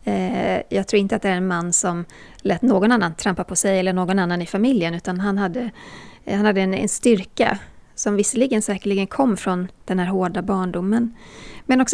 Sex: female